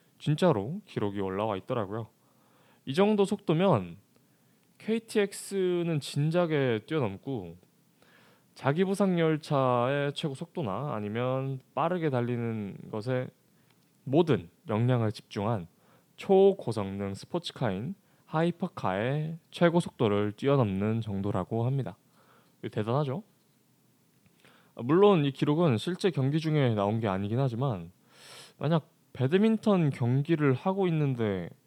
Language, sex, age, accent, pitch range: Korean, male, 20-39, native, 115-165 Hz